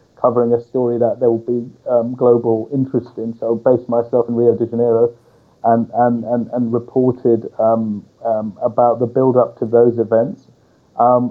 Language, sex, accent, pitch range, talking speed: English, male, British, 115-130 Hz, 180 wpm